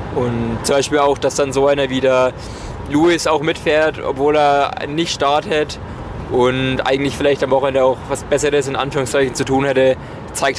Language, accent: German, German